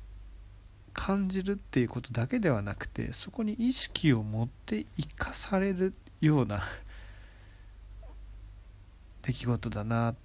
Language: Japanese